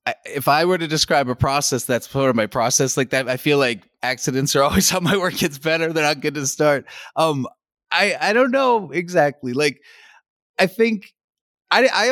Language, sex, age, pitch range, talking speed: English, male, 30-49, 125-155 Hz, 205 wpm